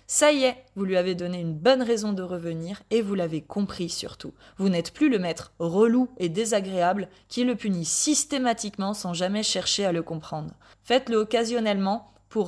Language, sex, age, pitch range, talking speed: French, female, 20-39, 180-245 Hz, 185 wpm